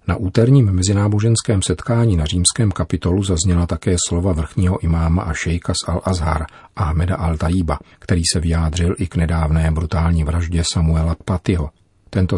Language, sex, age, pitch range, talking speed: Czech, male, 40-59, 85-95 Hz, 140 wpm